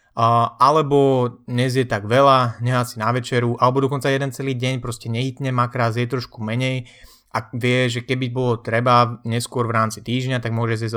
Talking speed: 180 wpm